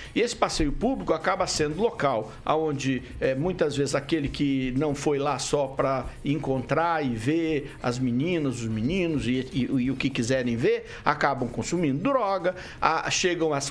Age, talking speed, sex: 60-79, 165 wpm, male